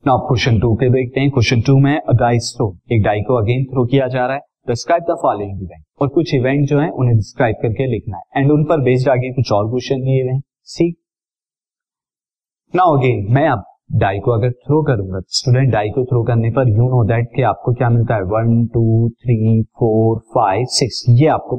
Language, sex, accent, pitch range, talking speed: Hindi, male, native, 115-145 Hz, 190 wpm